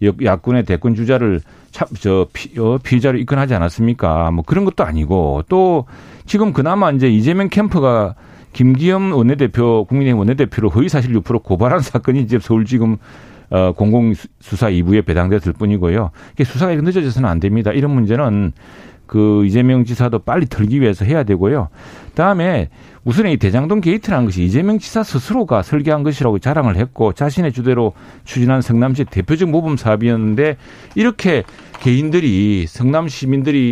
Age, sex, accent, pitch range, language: 40-59, male, native, 110-145 Hz, Korean